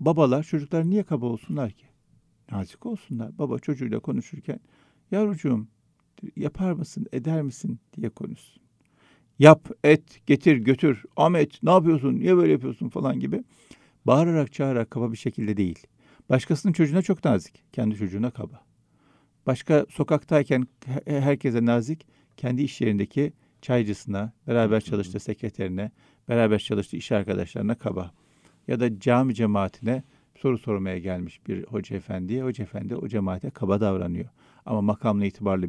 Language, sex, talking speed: Turkish, male, 130 wpm